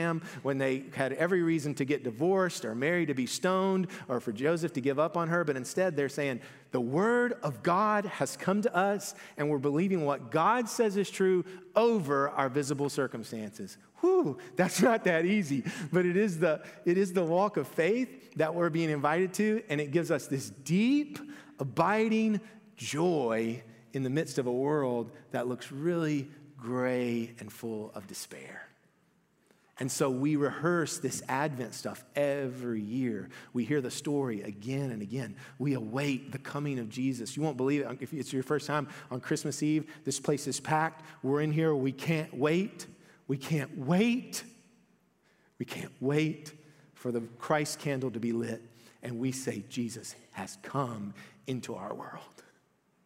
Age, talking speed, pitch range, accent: 40-59, 175 wpm, 130-180 Hz, American